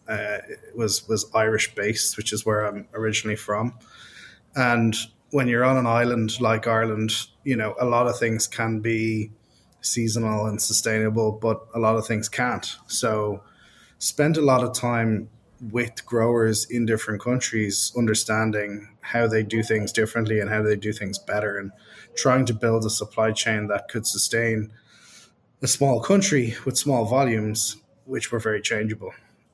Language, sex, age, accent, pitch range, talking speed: English, male, 20-39, Irish, 110-120 Hz, 165 wpm